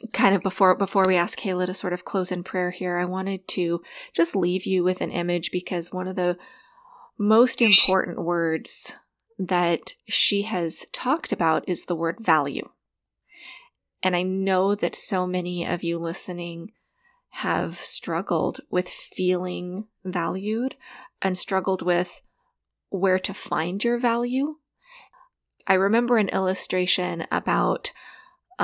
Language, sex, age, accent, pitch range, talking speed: English, female, 20-39, American, 180-225 Hz, 140 wpm